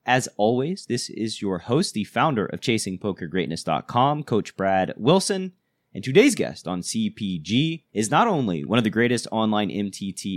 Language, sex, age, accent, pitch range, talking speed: English, male, 30-49, American, 105-145 Hz, 155 wpm